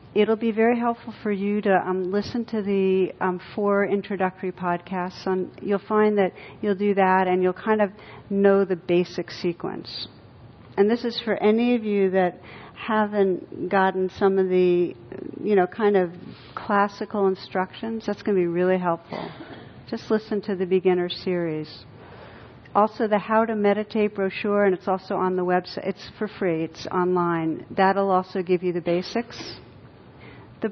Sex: female